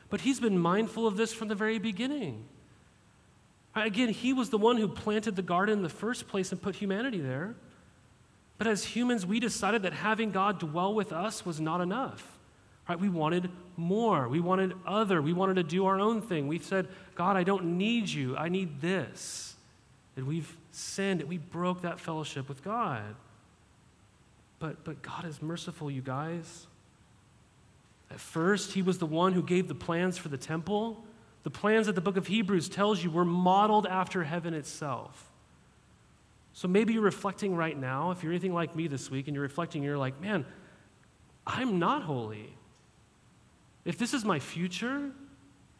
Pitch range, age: 155-210 Hz, 30-49